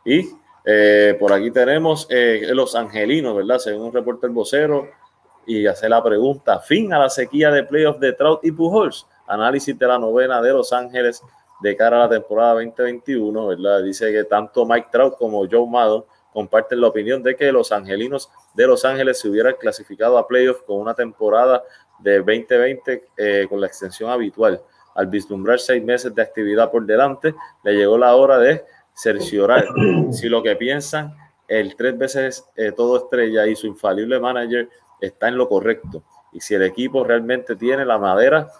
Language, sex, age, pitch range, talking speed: Spanish, male, 30-49, 110-140 Hz, 175 wpm